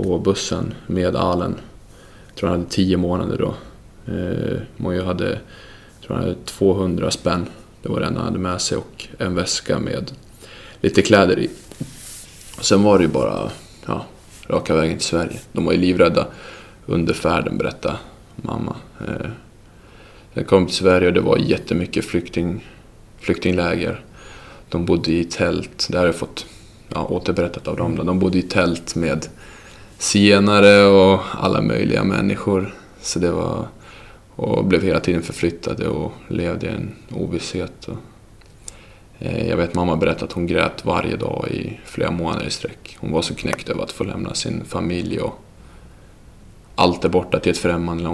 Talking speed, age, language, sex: 160 wpm, 20-39, Swedish, male